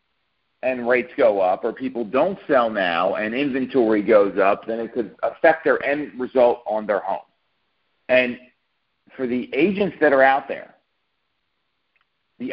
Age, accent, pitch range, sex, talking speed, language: 40-59, American, 120-145 Hz, male, 155 wpm, English